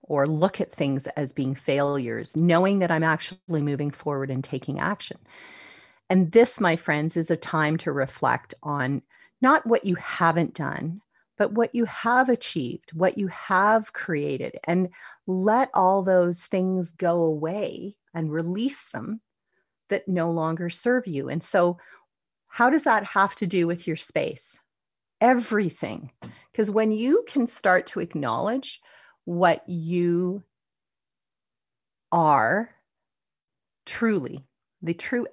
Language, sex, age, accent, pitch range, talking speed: English, female, 40-59, American, 155-200 Hz, 135 wpm